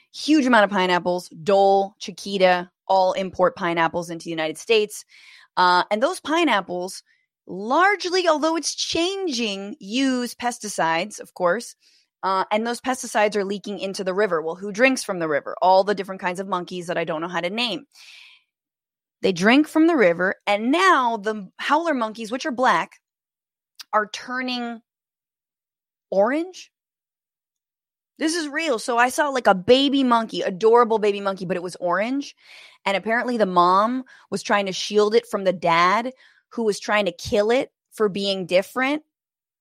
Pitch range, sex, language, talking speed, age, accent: 185-255 Hz, female, English, 165 wpm, 20-39, American